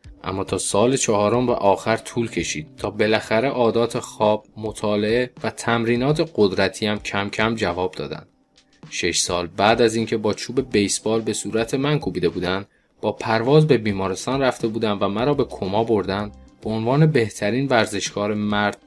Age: 20-39